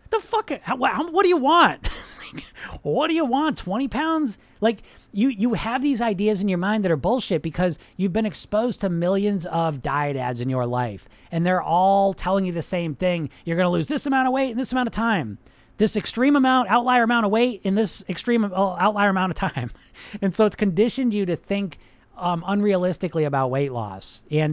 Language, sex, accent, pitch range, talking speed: English, male, American, 165-215 Hz, 205 wpm